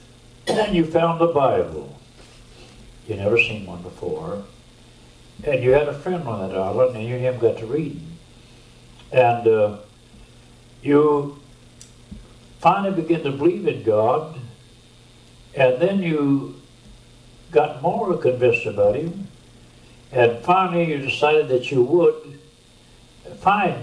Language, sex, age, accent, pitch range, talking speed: English, male, 60-79, American, 120-165 Hz, 125 wpm